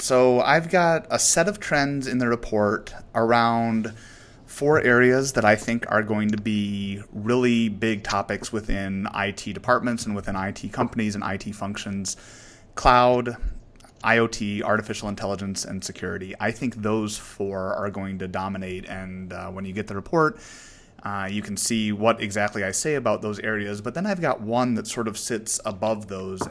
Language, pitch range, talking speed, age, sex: English, 100-120 Hz, 170 wpm, 30-49, male